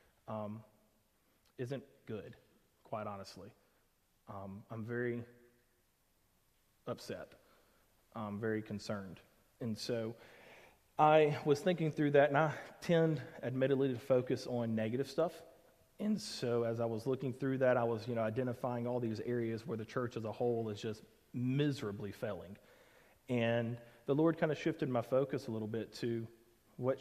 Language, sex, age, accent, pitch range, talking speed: English, male, 30-49, American, 115-140 Hz, 150 wpm